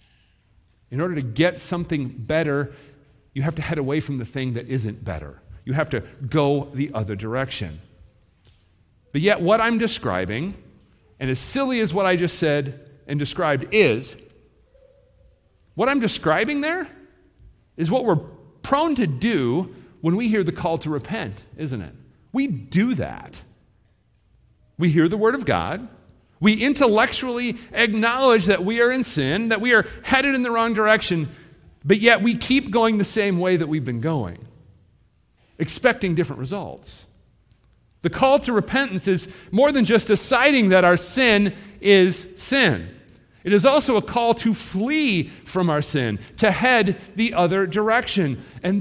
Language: English